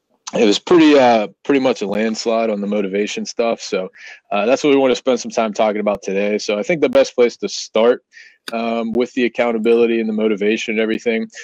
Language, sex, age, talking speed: English, male, 20-39, 220 wpm